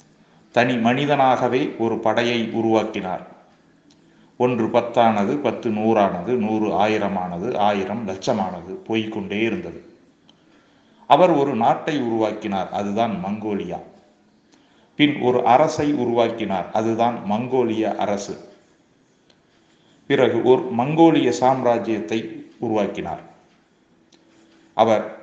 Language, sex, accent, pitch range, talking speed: Tamil, male, native, 105-125 Hz, 85 wpm